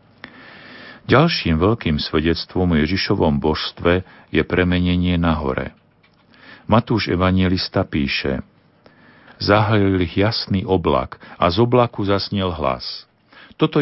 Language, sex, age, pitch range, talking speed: Slovak, male, 50-69, 80-105 Hz, 100 wpm